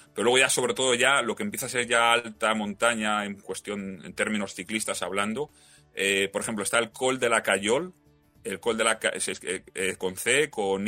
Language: Spanish